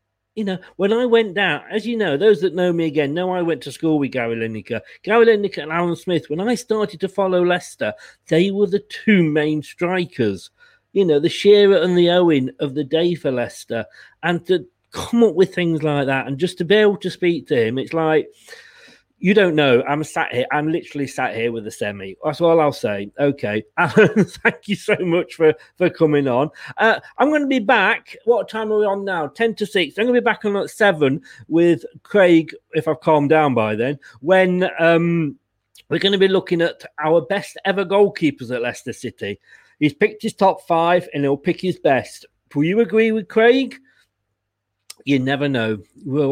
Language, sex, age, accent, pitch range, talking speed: English, male, 40-59, British, 145-200 Hz, 210 wpm